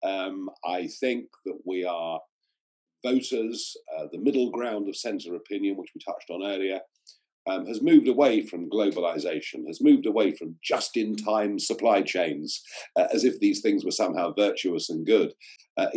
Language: English